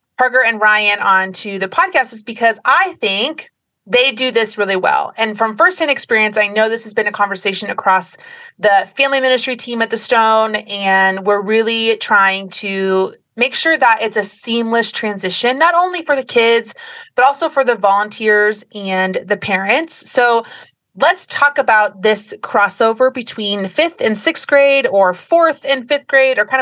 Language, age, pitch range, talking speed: English, 30-49, 205-275 Hz, 175 wpm